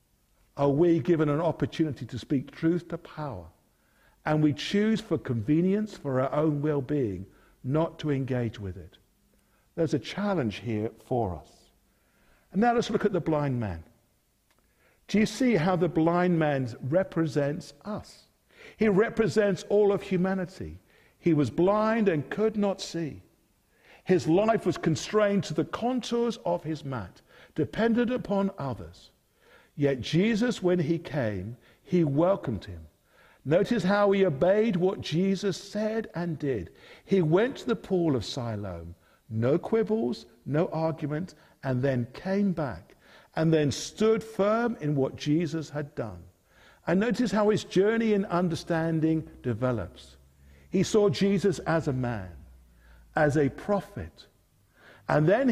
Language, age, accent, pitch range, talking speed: English, 60-79, British, 130-195 Hz, 145 wpm